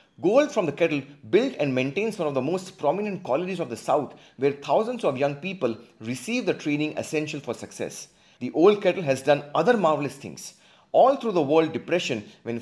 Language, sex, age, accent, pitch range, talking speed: English, male, 30-49, Indian, 130-180 Hz, 195 wpm